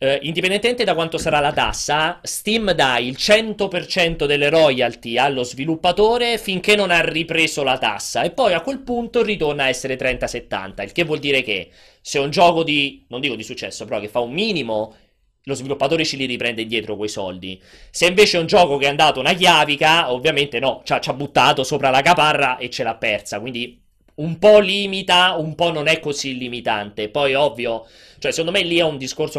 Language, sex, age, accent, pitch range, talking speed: Italian, male, 30-49, native, 130-180 Hz, 200 wpm